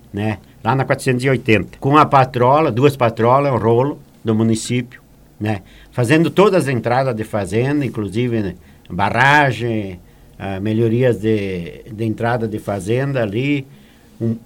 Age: 60-79